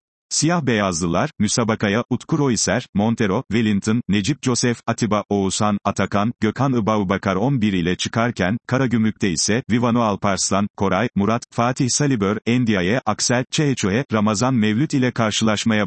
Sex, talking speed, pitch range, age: male, 120 wpm, 105-130 Hz, 40-59